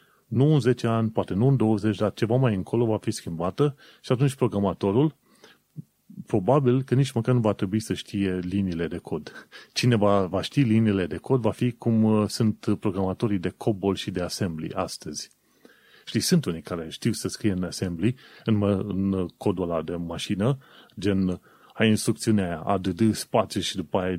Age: 30-49